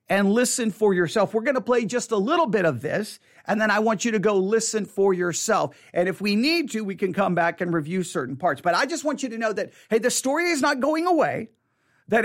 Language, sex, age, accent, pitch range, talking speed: English, male, 50-69, American, 170-240 Hz, 260 wpm